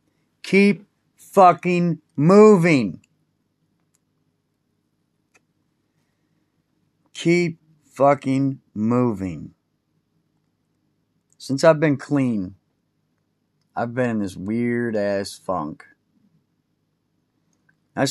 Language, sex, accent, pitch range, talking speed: English, male, American, 105-140 Hz, 55 wpm